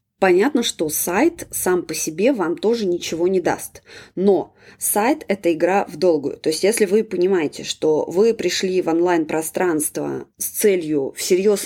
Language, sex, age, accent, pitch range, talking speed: Russian, female, 20-39, native, 165-240 Hz, 155 wpm